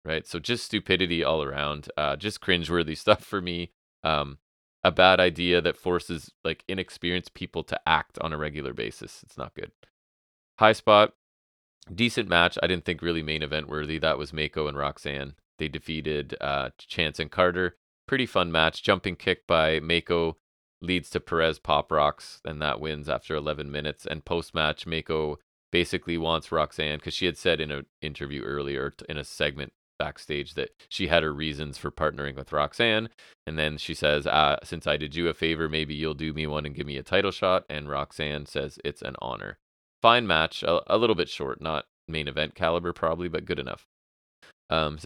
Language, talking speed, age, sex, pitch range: English, 190 wpm, 30-49, male, 75-90 Hz